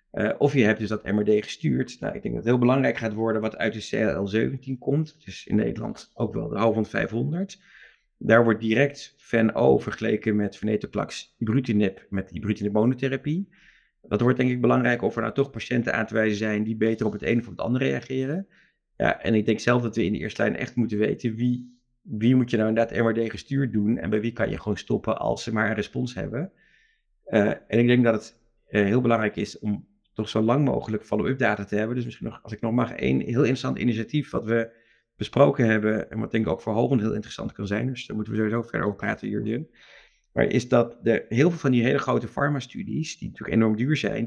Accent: Dutch